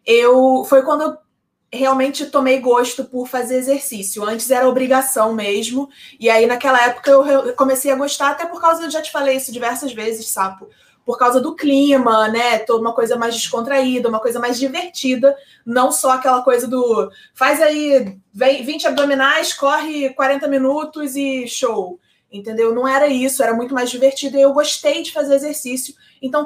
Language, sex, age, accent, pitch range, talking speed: Portuguese, female, 20-39, Brazilian, 235-280 Hz, 170 wpm